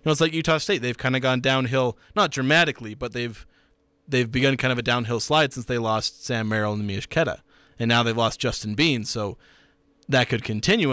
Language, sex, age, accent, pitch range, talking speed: English, male, 30-49, American, 115-145 Hz, 215 wpm